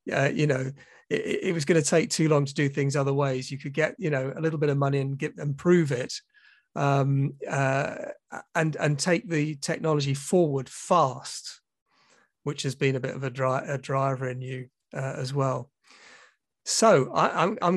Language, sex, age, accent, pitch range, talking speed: English, male, 40-59, British, 130-160 Hz, 195 wpm